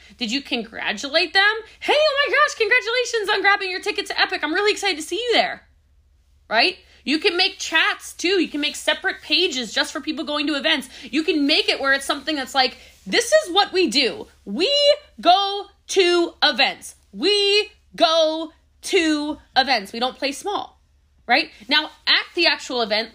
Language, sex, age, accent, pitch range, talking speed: English, female, 20-39, American, 240-360 Hz, 185 wpm